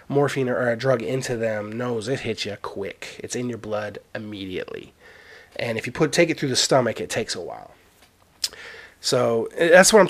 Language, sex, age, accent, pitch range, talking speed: English, male, 30-49, American, 110-150 Hz, 195 wpm